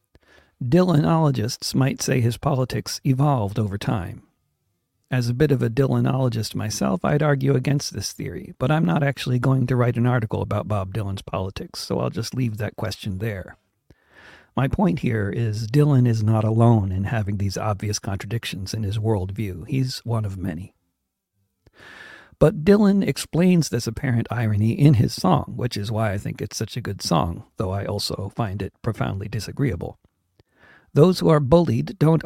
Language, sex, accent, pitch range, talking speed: English, male, American, 105-135 Hz, 170 wpm